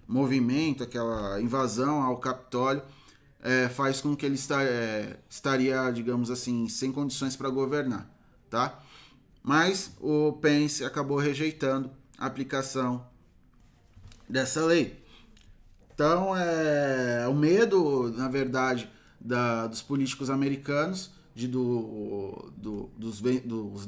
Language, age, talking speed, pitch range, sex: Portuguese, 20-39, 95 wpm, 125-150 Hz, male